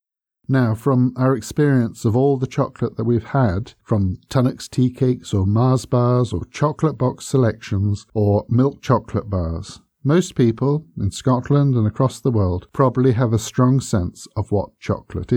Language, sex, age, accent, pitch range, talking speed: English, male, 50-69, British, 105-135 Hz, 165 wpm